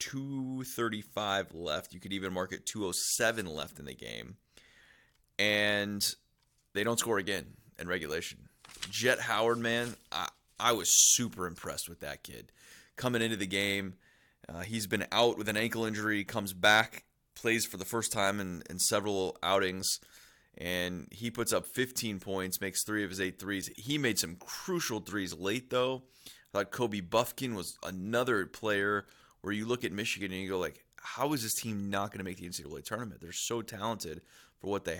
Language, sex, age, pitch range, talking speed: English, male, 30-49, 95-115 Hz, 180 wpm